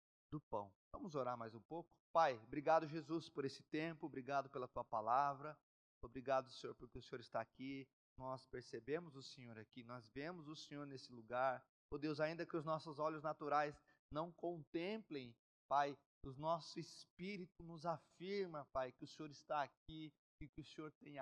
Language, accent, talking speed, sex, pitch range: Portuguese, Brazilian, 175 wpm, male, 135-170 Hz